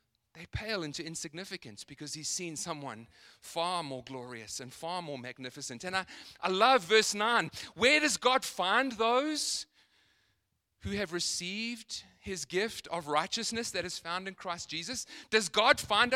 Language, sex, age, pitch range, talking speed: English, male, 30-49, 140-210 Hz, 155 wpm